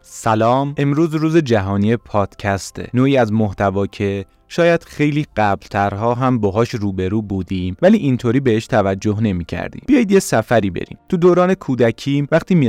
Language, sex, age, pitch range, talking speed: Persian, male, 30-49, 100-130 Hz, 145 wpm